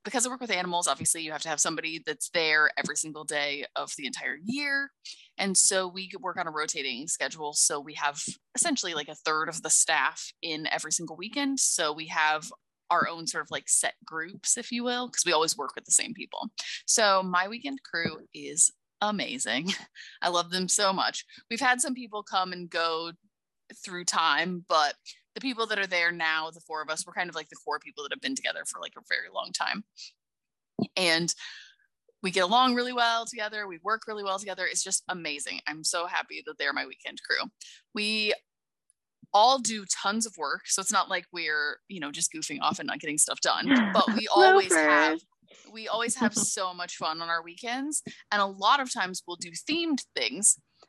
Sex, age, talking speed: female, 20-39, 210 wpm